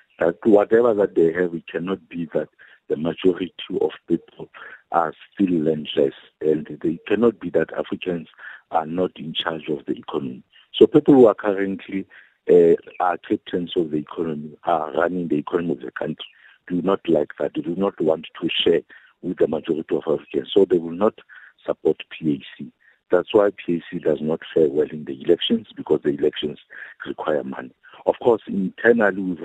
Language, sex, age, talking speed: English, male, 50-69, 175 wpm